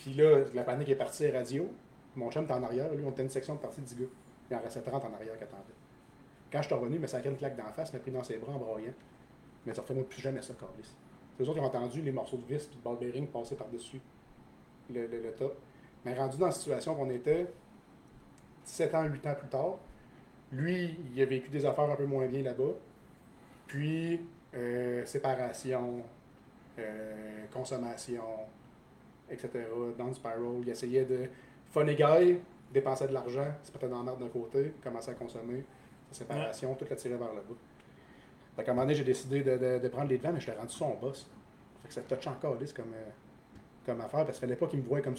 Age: 30-49